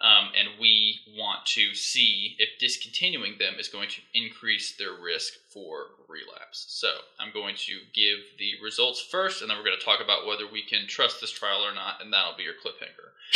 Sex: male